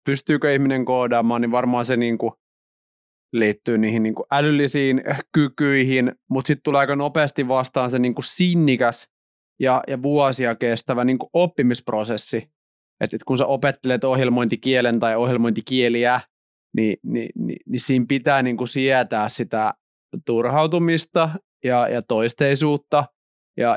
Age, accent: 30-49, native